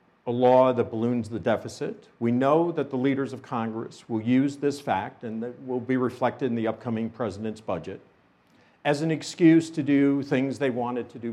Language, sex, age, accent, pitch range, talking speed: English, male, 50-69, American, 115-140 Hz, 195 wpm